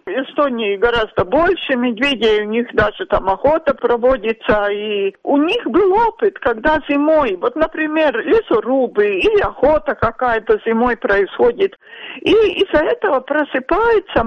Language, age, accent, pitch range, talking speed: Russian, 50-69, native, 255-340 Hz, 125 wpm